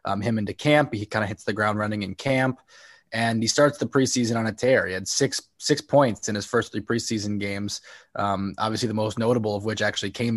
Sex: male